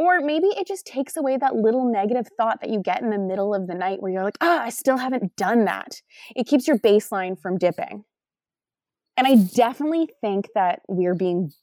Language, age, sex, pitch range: English, 20-39, female, 180-255 Hz